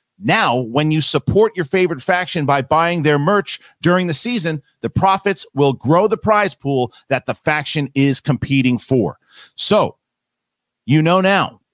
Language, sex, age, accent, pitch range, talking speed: English, male, 40-59, American, 130-165 Hz, 160 wpm